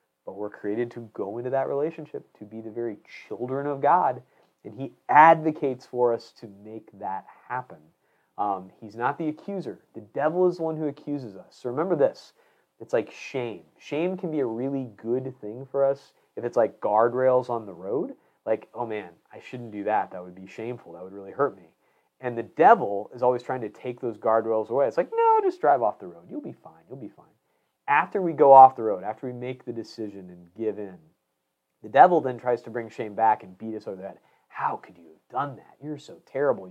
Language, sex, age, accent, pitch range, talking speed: English, male, 30-49, American, 105-135 Hz, 225 wpm